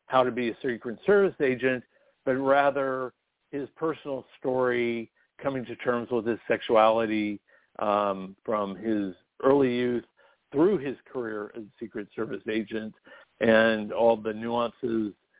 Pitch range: 110-135 Hz